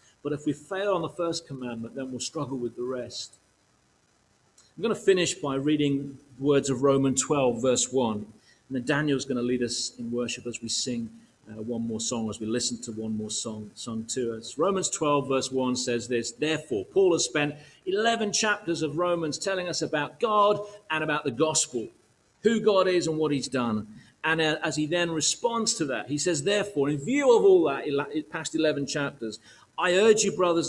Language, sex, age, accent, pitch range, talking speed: English, male, 40-59, British, 120-160 Hz, 205 wpm